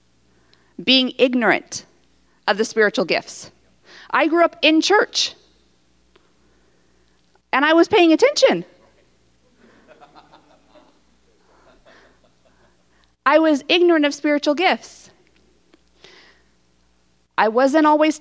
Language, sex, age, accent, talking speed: English, female, 30-49, American, 80 wpm